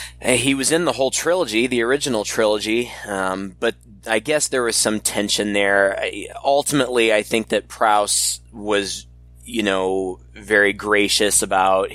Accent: American